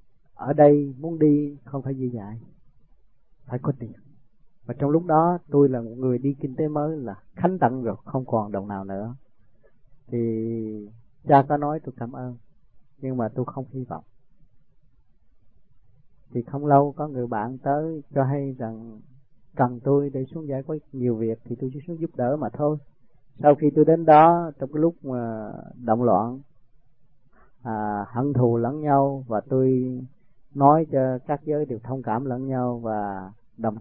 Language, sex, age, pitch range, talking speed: Vietnamese, male, 20-39, 115-140 Hz, 175 wpm